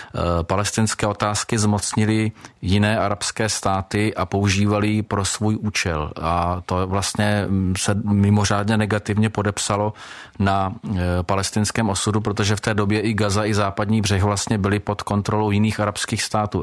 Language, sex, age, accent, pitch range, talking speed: Czech, male, 40-59, native, 95-105 Hz, 135 wpm